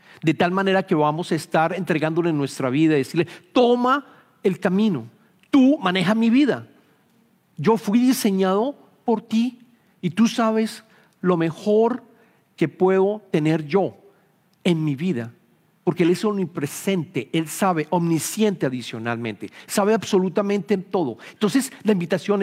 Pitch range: 145-195 Hz